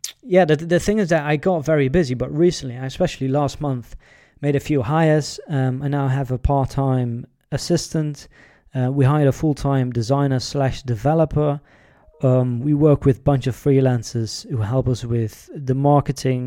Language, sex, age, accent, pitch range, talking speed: English, male, 20-39, British, 125-145 Hz, 175 wpm